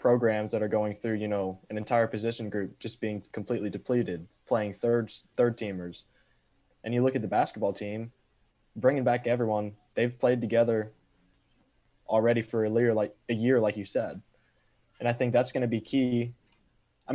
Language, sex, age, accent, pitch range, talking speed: English, male, 20-39, American, 105-120 Hz, 180 wpm